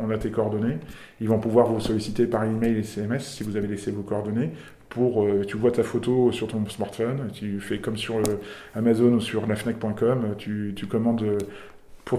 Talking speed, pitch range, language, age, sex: 200 wpm, 105-120 Hz, French, 20-39, male